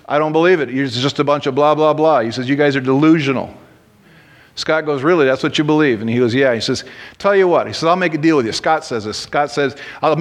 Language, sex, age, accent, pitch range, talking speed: English, male, 40-59, American, 140-200 Hz, 280 wpm